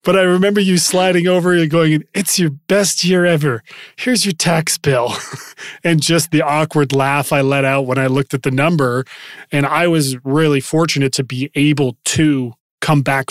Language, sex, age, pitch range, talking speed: English, male, 30-49, 130-155 Hz, 190 wpm